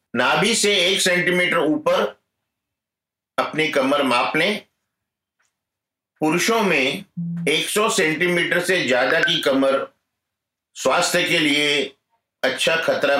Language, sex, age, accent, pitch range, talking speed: Hindi, male, 50-69, native, 130-170 Hz, 100 wpm